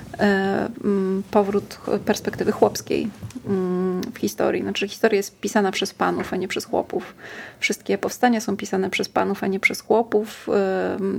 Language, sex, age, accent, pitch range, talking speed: Polish, female, 30-49, native, 200-220 Hz, 135 wpm